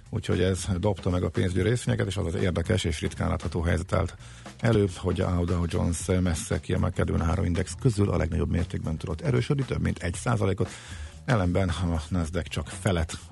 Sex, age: male, 50-69